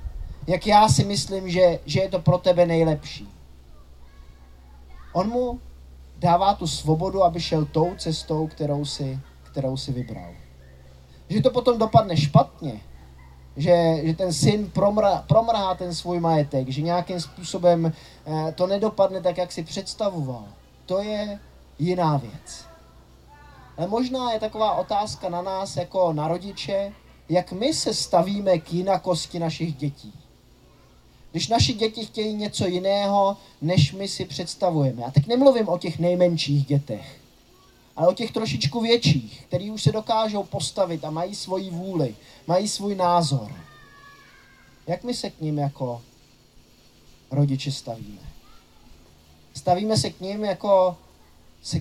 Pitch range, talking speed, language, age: 135-190 Hz, 135 wpm, Czech, 20-39